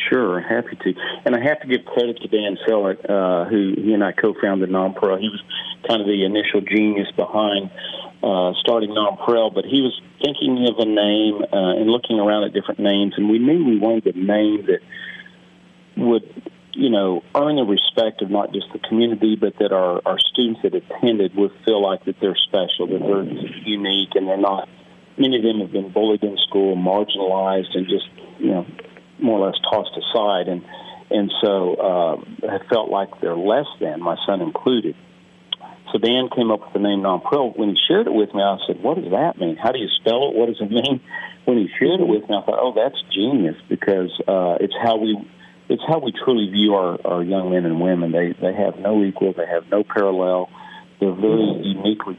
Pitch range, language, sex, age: 95-110 Hz, English, male, 50-69